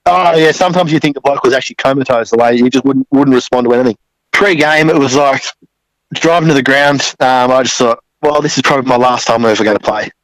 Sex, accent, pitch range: male, Australian, 120-140 Hz